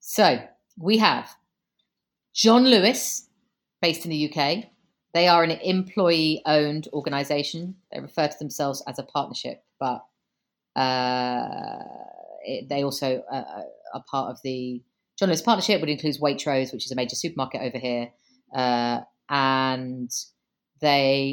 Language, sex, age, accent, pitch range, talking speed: English, female, 30-49, British, 140-190 Hz, 135 wpm